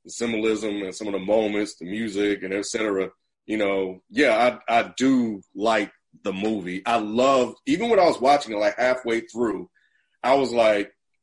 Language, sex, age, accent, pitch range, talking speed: English, male, 30-49, American, 110-150 Hz, 185 wpm